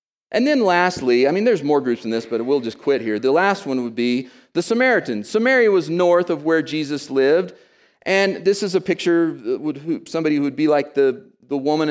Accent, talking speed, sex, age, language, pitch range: American, 205 wpm, male, 40-59, English, 145-195 Hz